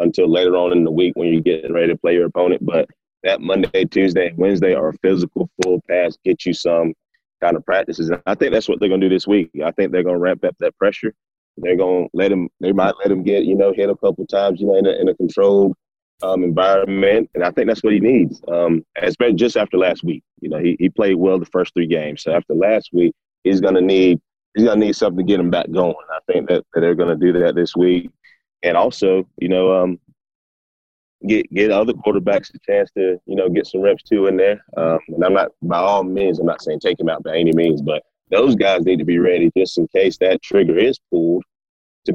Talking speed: 260 wpm